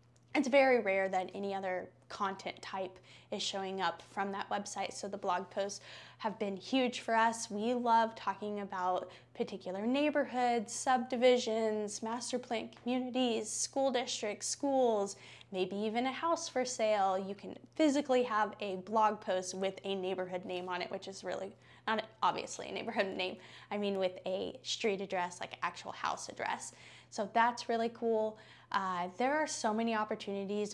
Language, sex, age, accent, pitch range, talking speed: English, female, 10-29, American, 195-245 Hz, 160 wpm